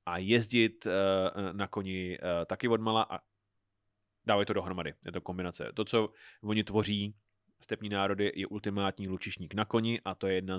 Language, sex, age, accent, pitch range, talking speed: Czech, male, 20-39, native, 95-110 Hz, 160 wpm